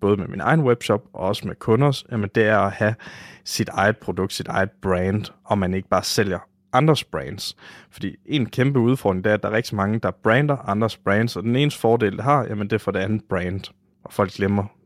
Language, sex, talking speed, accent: Danish, male, 225 wpm, native